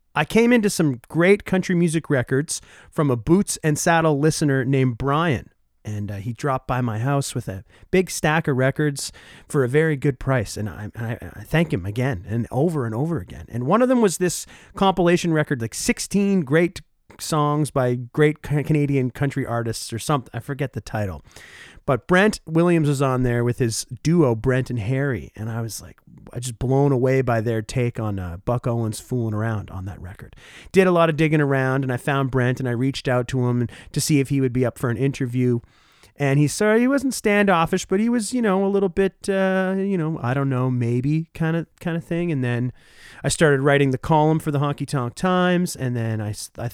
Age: 30-49